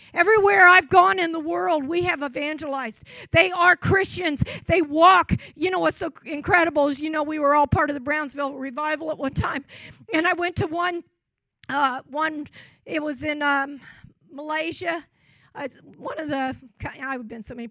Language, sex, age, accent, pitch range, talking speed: English, female, 50-69, American, 265-315 Hz, 185 wpm